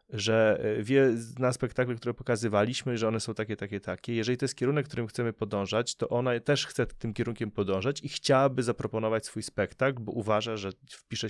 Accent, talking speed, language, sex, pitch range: native, 185 wpm, Polish, male, 105-130 Hz